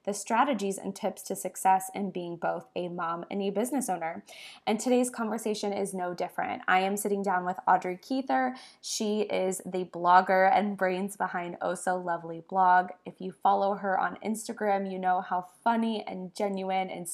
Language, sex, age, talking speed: English, female, 20-39, 180 wpm